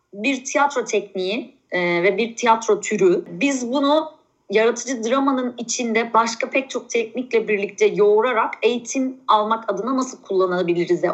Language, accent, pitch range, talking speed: Turkish, native, 205-270 Hz, 125 wpm